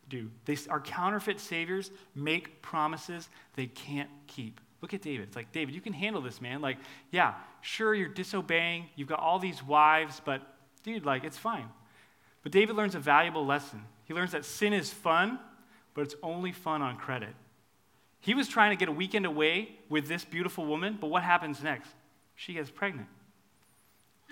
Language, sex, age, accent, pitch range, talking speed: English, male, 30-49, American, 145-200 Hz, 180 wpm